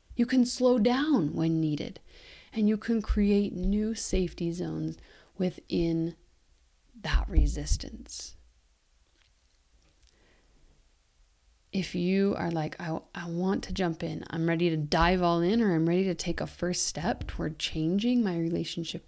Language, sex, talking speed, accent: English, female, 140 wpm, American